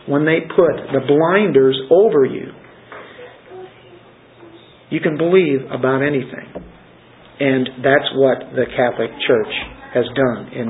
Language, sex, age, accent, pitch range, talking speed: English, male, 50-69, American, 150-200 Hz, 120 wpm